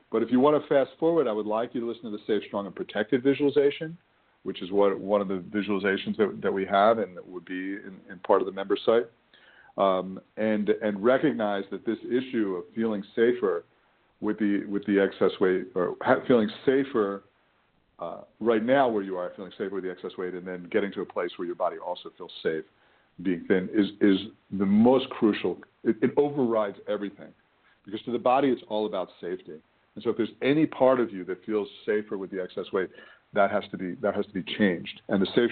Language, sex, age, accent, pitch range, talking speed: English, male, 50-69, American, 100-125 Hz, 220 wpm